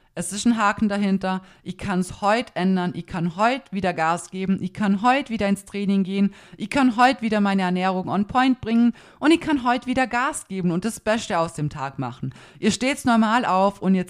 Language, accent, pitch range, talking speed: German, German, 180-225 Hz, 220 wpm